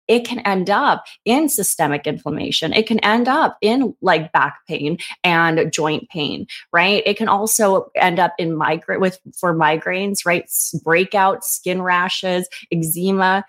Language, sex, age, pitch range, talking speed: English, female, 20-39, 165-195 Hz, 150 wpm